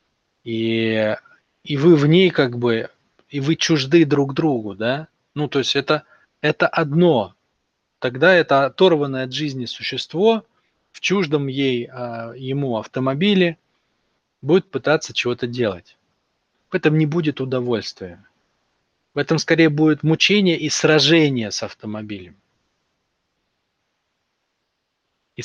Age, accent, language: 20-39, native, Russian